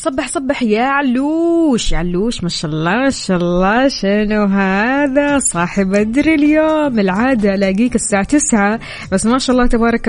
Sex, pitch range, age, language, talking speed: female, 185-235 Hz, 20-39, Arabic, 155 wpm